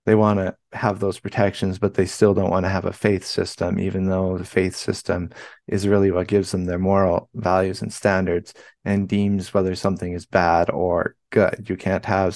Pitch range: 95-105 Hz